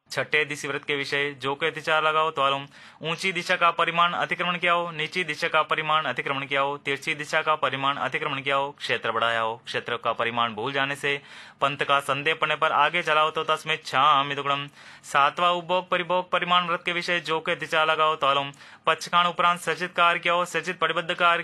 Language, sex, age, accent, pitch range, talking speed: Hindi, male, 20-39, native, 140-160 Hz, 190 wpm